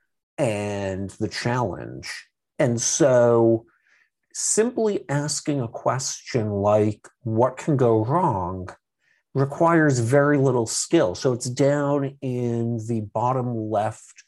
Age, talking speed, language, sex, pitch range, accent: 50-69, 105 wpm, English, male, 100-135 Hz, American